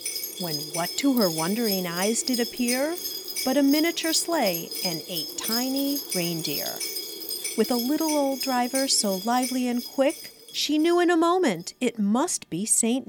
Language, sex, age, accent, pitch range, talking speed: English, female, 50-69, American, 185-295 Hz, 155 wpm